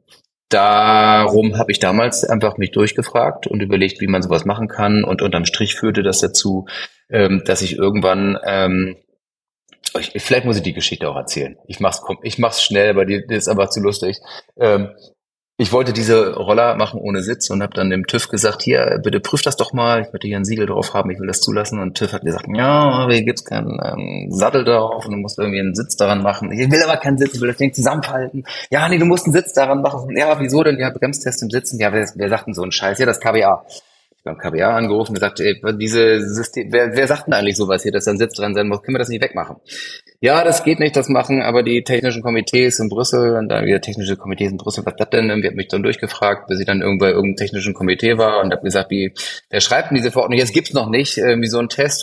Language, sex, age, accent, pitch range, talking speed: German, male, 30-49, German, 100-120 Hz, 235 wpm